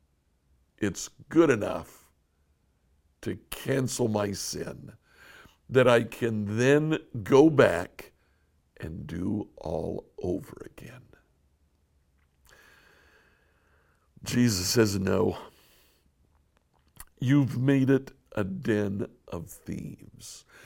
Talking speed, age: 80 wpm, 60-79